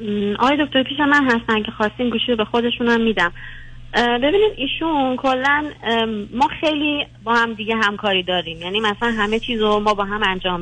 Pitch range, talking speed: 180-230 Hz, 170 wpm